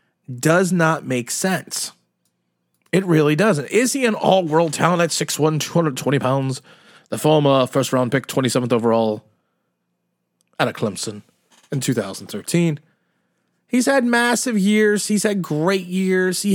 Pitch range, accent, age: 140-195 Hz, American, 30-49